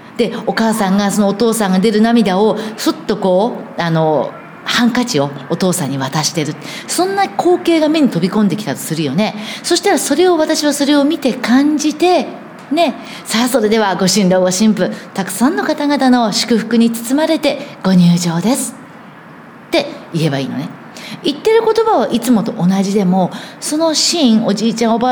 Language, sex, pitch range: Japanese, female, 195-285 Hz